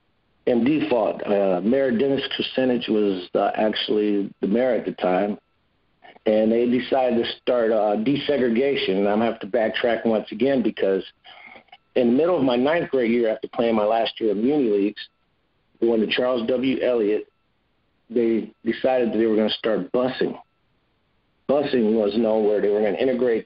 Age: 50-69